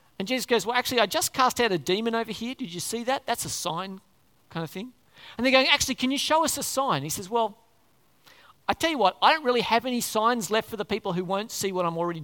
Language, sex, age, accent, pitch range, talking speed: English, male, 40-59, Australian, 180-255 Hz, 275 wpm